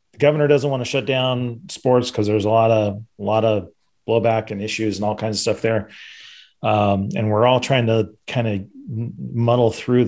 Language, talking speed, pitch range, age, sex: English, 200 wpm, 105-130 Hz, 40-59, male